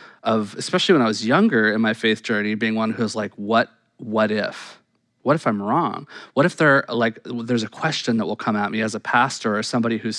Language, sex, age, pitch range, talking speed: English, male, 20-39, 110-130 Hz, 235 wpm